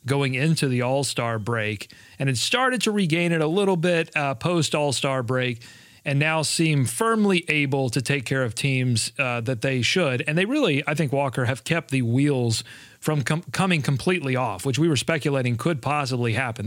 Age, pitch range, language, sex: 40-59, 125-160 Hz, English, male